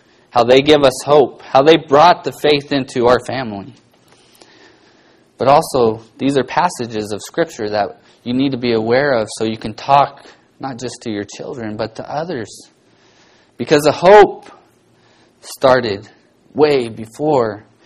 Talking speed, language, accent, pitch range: 150 wpm, English, American, 115-150 Hz